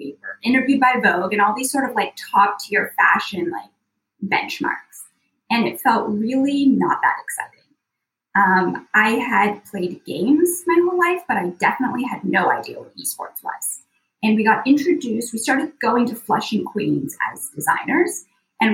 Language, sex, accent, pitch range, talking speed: English, female, American, 210-275 Hz, 165 wpm